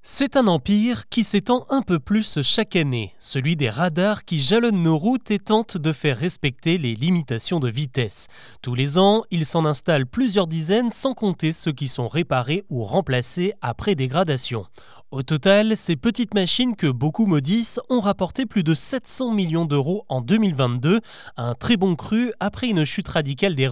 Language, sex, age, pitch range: French, male, 30-49, 140-205 Hz